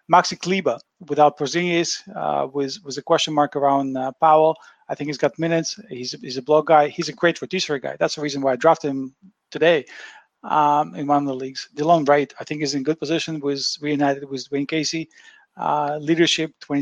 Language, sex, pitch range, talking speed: English, male, 140-160 Hz, 205 wpm